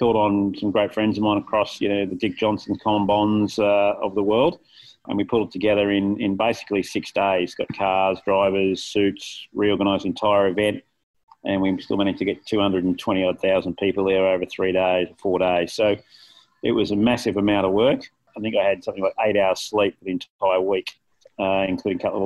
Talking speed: 210 wpm